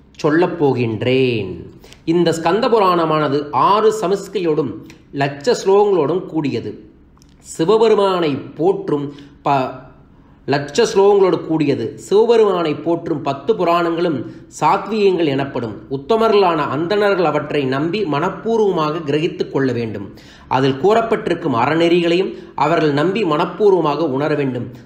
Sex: male